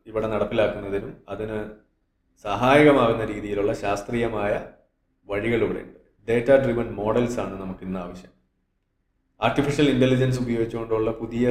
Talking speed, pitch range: 95 wpm, 105-125 Hz